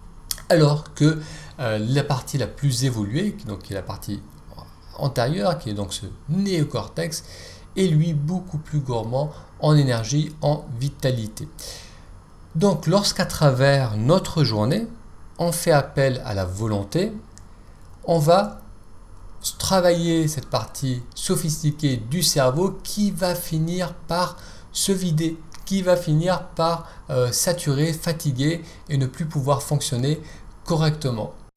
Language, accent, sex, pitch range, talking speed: French, French, male, 115-160 Hz, 125 wpm